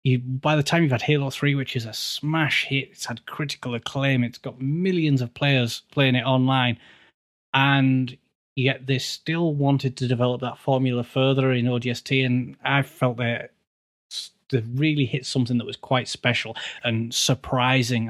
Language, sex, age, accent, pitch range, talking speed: English, male, 30-49, British, 120-145 Hz, 170 wpm